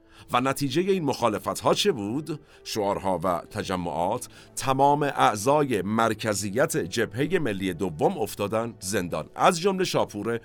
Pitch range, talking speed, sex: 110-135 Hz, 120 wpm, male